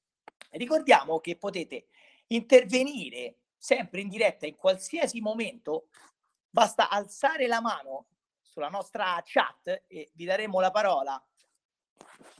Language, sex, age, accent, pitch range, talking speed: Italian, male, 40-59, native, 170-250 Hz, 115 wpm